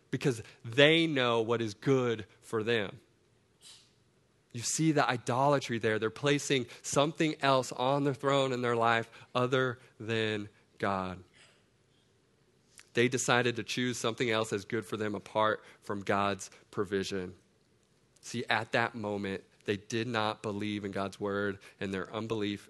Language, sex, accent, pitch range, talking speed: English, male, American, 100-125 Hz, 145 wpm